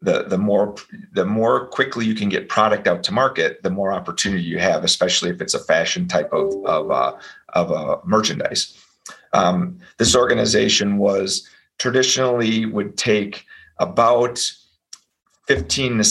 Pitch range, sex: 95-130 Hz, male